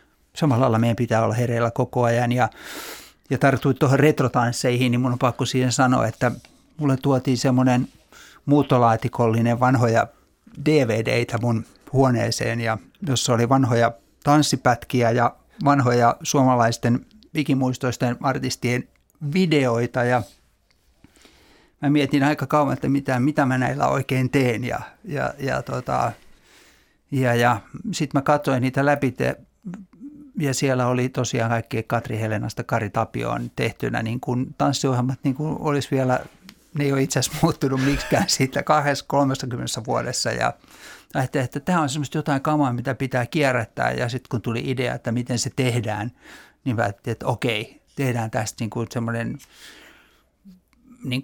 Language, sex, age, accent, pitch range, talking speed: Finnish, male, 60-79, native, 120-140 Hz, 140 wpm